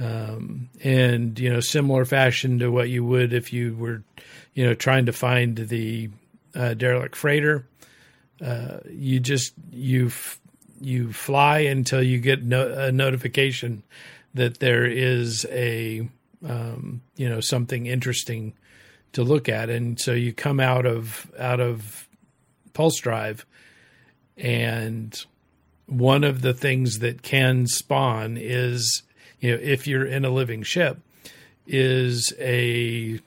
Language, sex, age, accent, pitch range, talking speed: English, male, 50-69, American, 115-130 Hz, 135 wpm